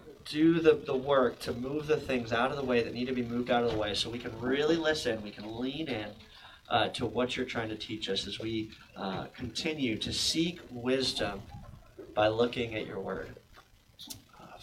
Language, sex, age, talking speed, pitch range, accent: English, male, 30-49, 210 wpm, 110-135 Hz, American